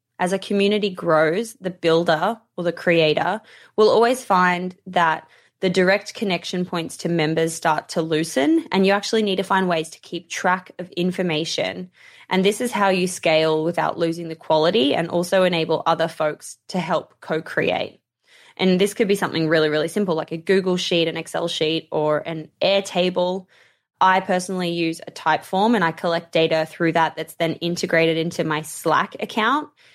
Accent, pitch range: Australian, 160-195 Hz